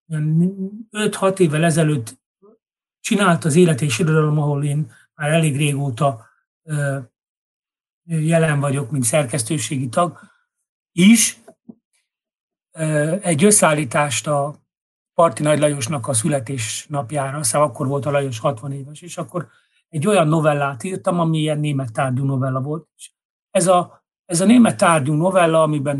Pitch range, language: 140-175 Hz, Hungarian